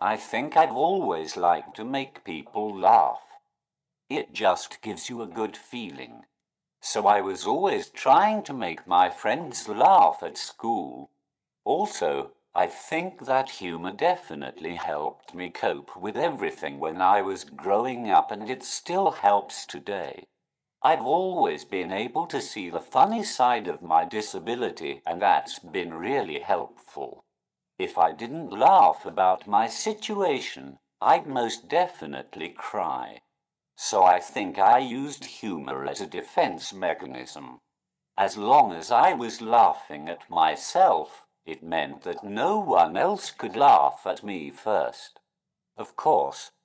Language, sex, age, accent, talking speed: English, male, 50-69, British, 140 wpm